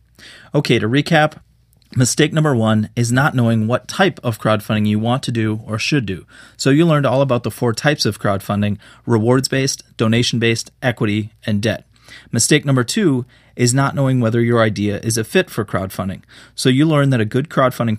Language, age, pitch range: English, 30-49, 110-135 Hz